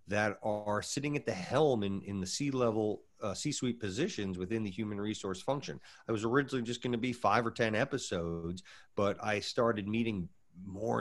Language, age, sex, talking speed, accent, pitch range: English, 40-59, male, 180 wpm, American, 90-115 Hz